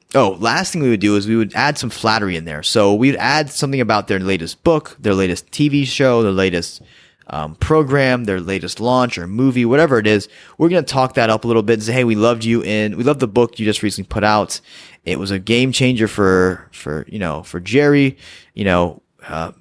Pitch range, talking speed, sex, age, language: 105-140 Hz, 235 wpm, male, 20-39, English